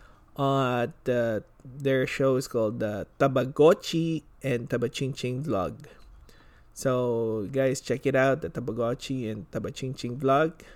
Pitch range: 115-140 Hz